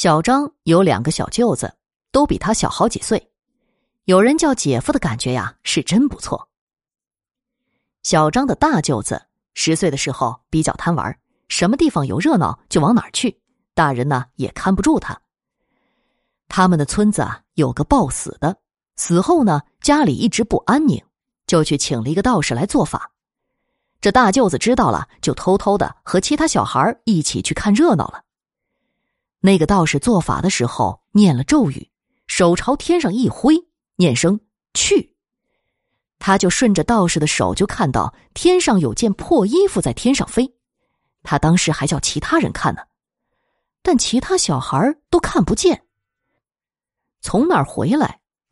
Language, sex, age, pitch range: Chinese, female, 20-39, 160-255 Hz